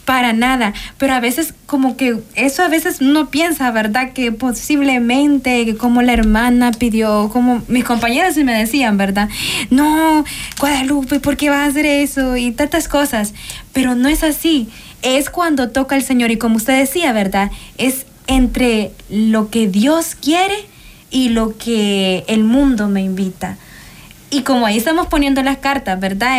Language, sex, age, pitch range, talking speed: Spanish, female, 20-39, 220-280 Hz, 165 wpm